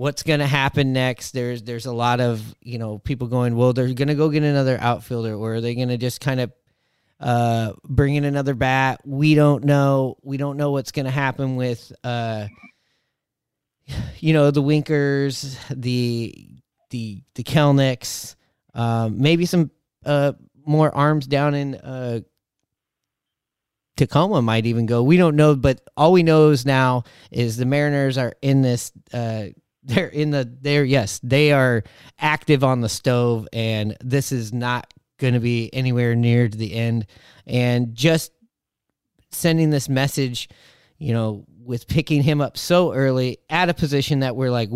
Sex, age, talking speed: male, 30-49, 170 wpm